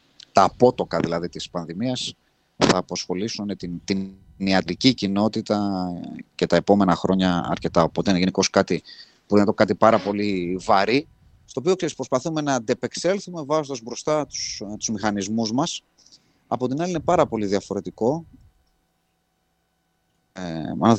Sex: male